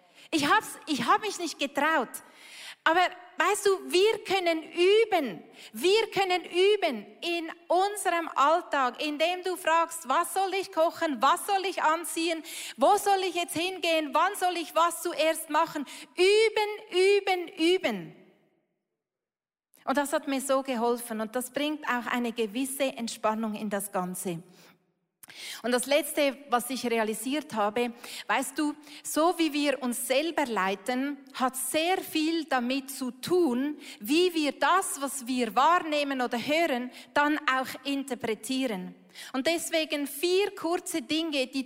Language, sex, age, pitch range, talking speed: German, female, 30-49, 255-335 Hz, 140 wpm